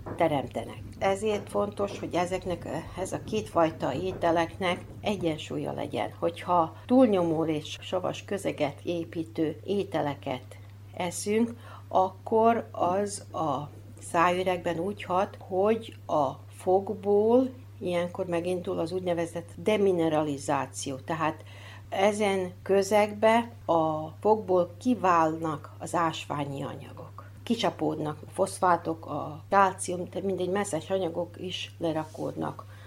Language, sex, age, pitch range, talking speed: Hungarian, female, 60-79, 135-190 Hz, 95 wpm